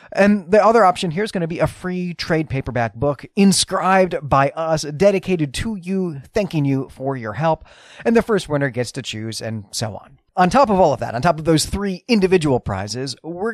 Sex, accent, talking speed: male, American, 215 wpm